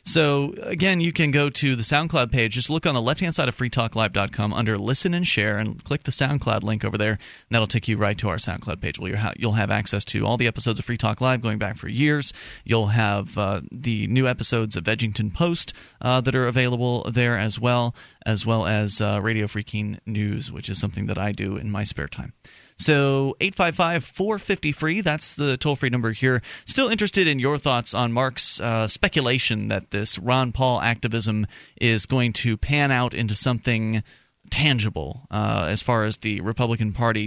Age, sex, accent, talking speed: 30-49, male, American, 200 wpm